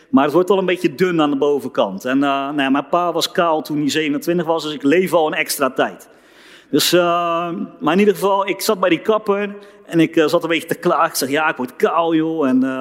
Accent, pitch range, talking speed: Dutch, 150-200 Hz, 260 wpm